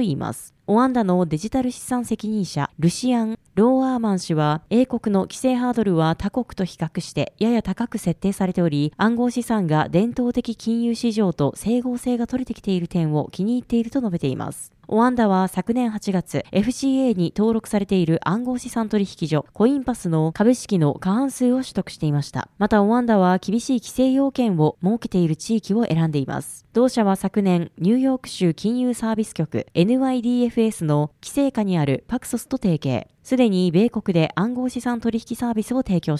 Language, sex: Japanese, female